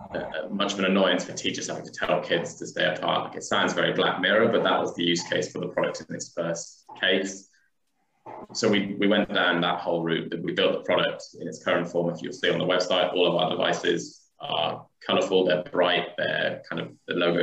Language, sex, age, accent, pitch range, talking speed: English, male, 20-39, British, 85-100 Hz, 240 wpm